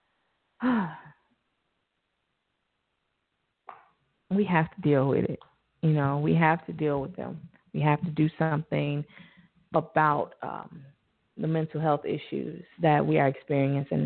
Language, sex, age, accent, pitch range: English, female, 30-49, American, 155-200 Hz